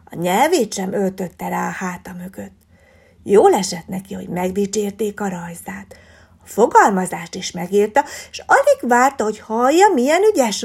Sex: female